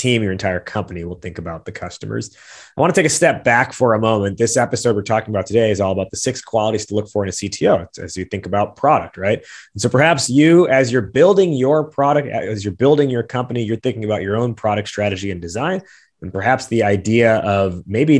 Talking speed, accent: 235 wpm, American